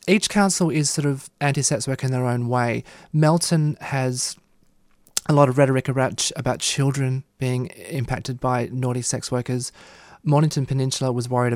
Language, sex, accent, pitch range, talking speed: English, male, Australian, 125-145 Hz, 155 wpm